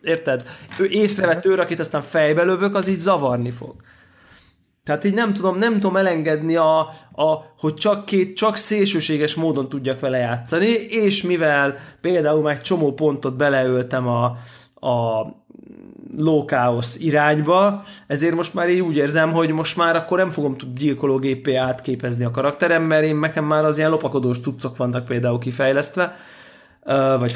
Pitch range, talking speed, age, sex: 130-170 Hz, 155 wpm, 20-39, male